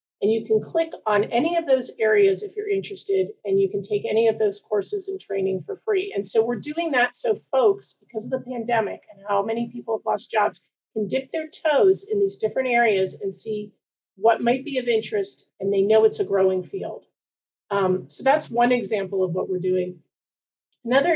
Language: English